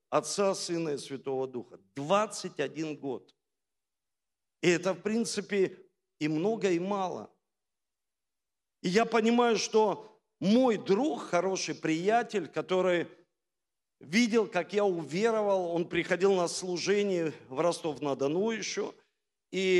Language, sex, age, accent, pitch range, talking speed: Russian, male, 50-69, native, 185-245 Hz, 110 wpm